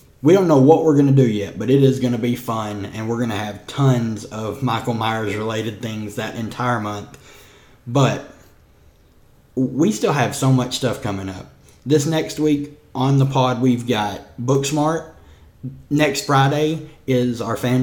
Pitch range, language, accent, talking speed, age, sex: 110-135 Hz, English, American, 175 wpm, 20-39, male